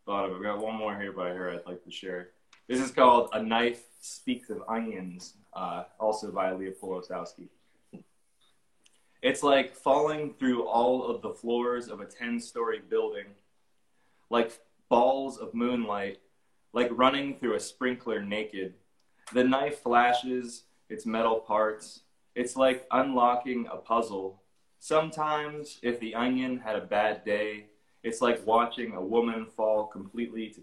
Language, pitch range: English, 110-130 Hz